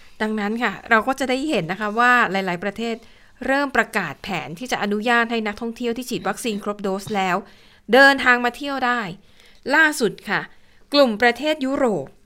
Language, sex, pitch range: Thai, female, 205-255 Hz